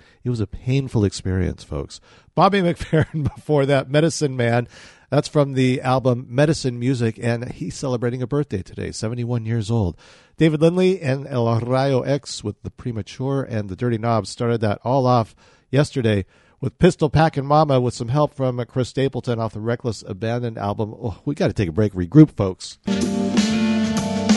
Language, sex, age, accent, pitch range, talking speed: English, male, 50-69, American, 110-145 Hz, 165 wpm